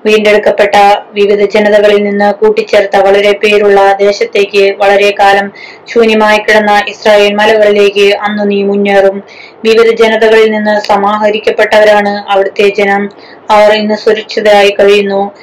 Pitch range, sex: 205-215 Hz, female